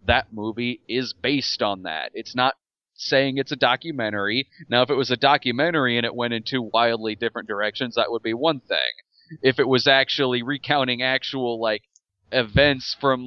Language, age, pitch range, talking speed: English, 30-49, 120-145 Hz, 180 wpm